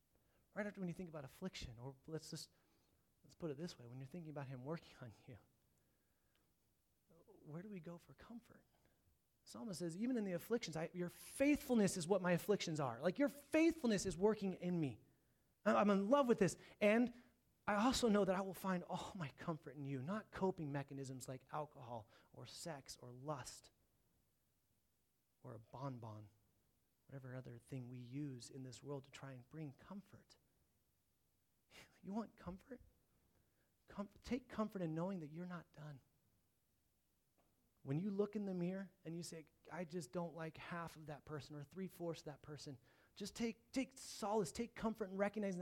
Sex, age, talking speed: male, 30-49, 180 wpm